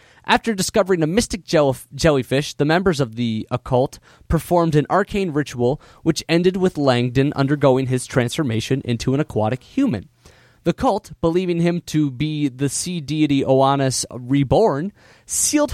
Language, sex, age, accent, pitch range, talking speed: English, male, 30-49, American, 125-170 Hz, 140 wpm